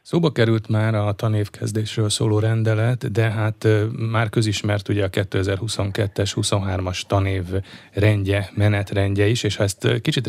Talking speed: 135 wpm